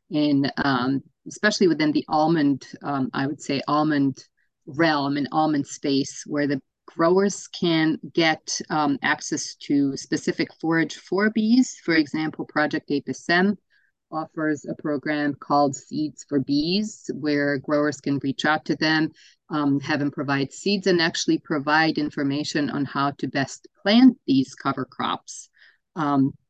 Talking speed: 145 wpm